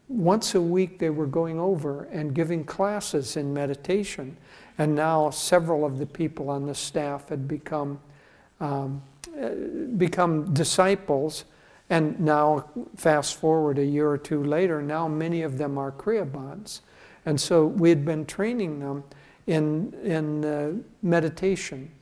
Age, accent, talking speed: 60-79, American, 140 wpm